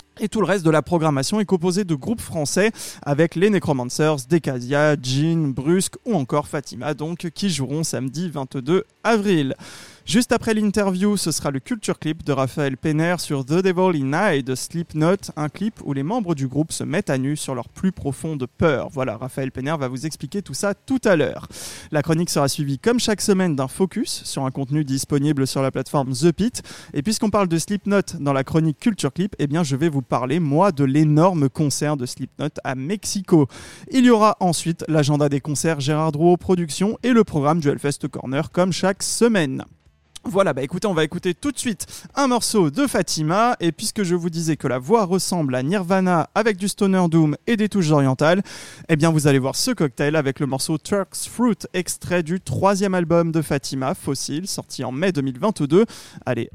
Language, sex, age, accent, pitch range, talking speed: French, male, 20-39, French, 140-190 Hz, 200 wpm